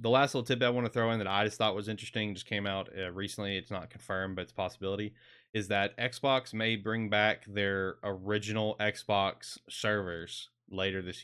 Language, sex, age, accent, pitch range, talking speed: English, male, 20-39, American, 95-115 Hz, 215 wpm